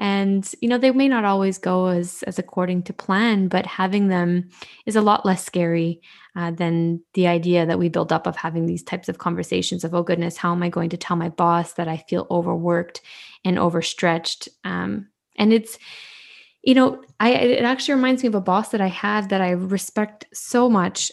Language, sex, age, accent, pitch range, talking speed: English, female, 10-29, American, 180-215 Hz, 205 wpm